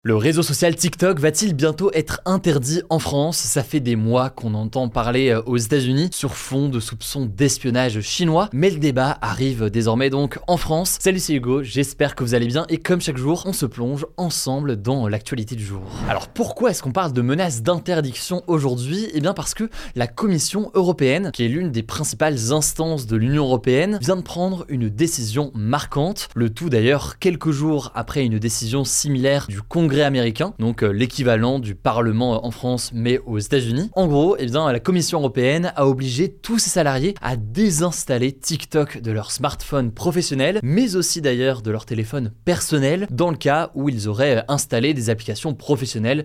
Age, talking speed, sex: 20-39, 185 wpm, male